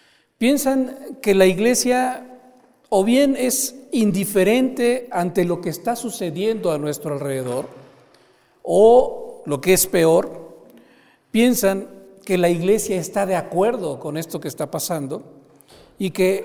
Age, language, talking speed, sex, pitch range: 50-69, Spanish, 130 wpm, male, 160-205 Hz